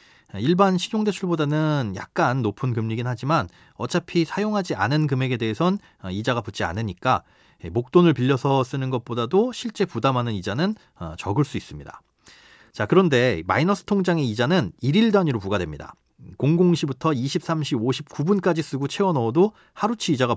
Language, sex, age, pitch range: Korean, male, 40-59, 115-170 Hz